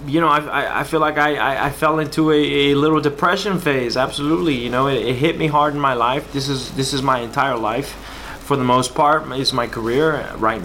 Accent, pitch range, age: American, 130-155 Hz, 20-39